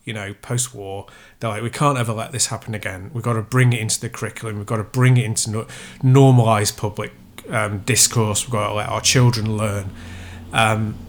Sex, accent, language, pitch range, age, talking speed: male, British, English, 110-140 Hz, 30-49, 205 wpm